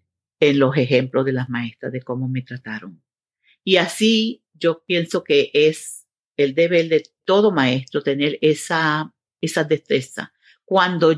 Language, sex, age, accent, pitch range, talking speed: Spanish, female, 50-69, American, 135-170 Hz, 140 wpm